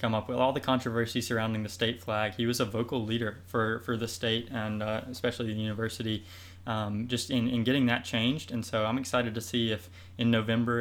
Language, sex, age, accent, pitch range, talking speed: English, male, 20-39, American, 110-125 Hz, 220 wpm